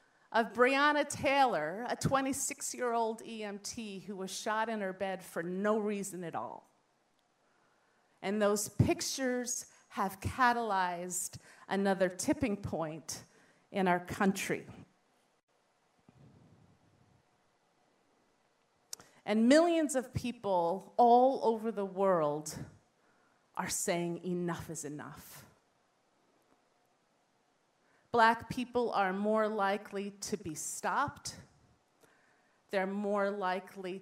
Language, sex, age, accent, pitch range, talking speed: English, female, 30-49, American, 185-235 Hz, 90 wpm